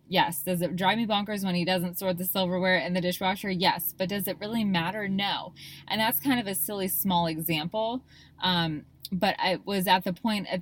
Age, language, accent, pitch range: 20-39, English, American, 170-200 Hz